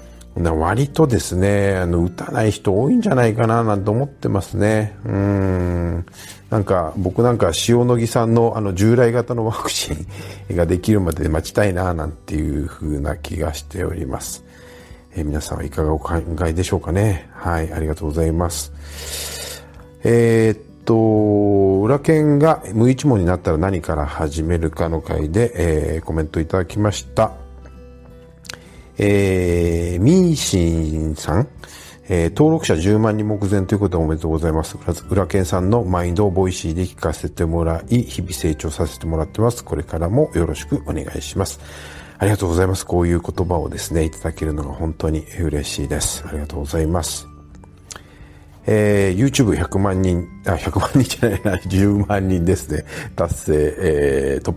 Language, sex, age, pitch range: Japanese, male, 50-69, 80-105 Hz